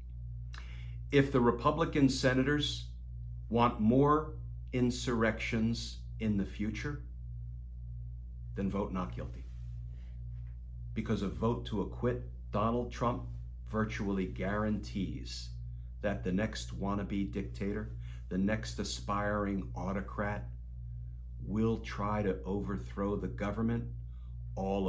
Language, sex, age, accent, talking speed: English, male, 50-69, American, 95 wpm